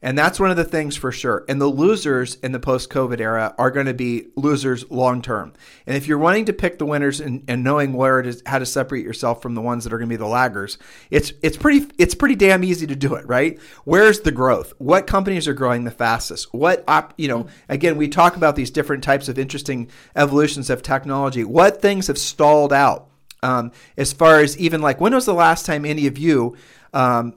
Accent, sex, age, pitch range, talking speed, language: American, male, 40-59, 130-155 Hz, 230 wpm, English